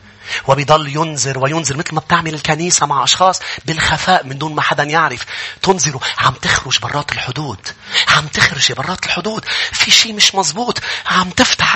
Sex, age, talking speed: male, 30-49, 155 wpm